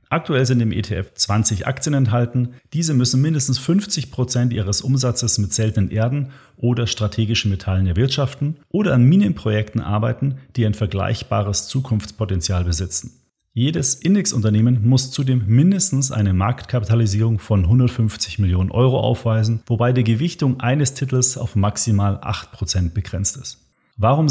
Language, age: German, 40-59